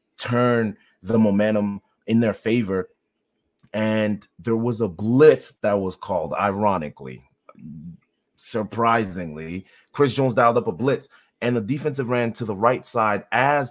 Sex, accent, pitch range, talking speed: male, American, 95-115 Hz, 135 wpm